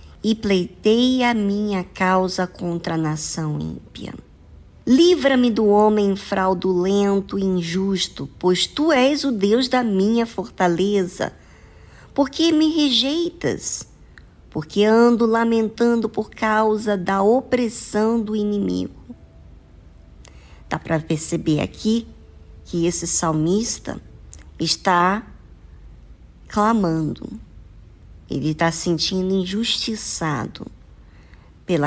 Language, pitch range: Portuguese, 155-225 Hz